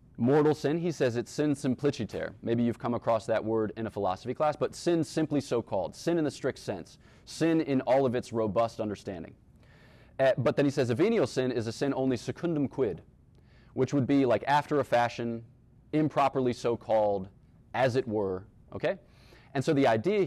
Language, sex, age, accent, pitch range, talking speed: English, male, 30-49, American, 115-150 Hz, 190 wpm